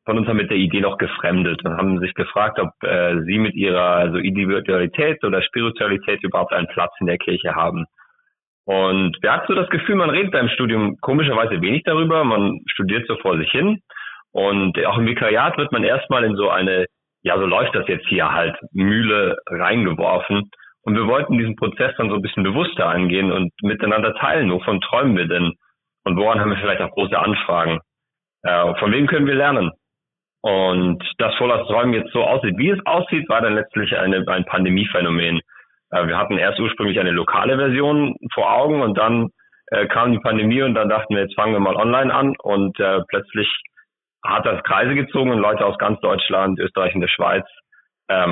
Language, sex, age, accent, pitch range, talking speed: German, male, 30-49, German, 90-115 Hz, 195 wpm